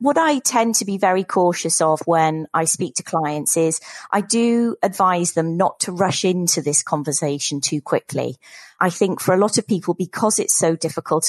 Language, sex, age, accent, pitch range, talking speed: English, female, 30-49, British, 155-185 Hz, 195 wpm